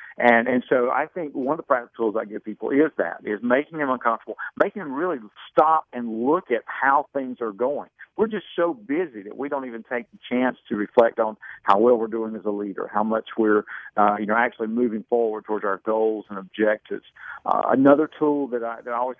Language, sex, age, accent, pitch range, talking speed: English, male, 50-69, American, 110-145 Hz, 230 wpm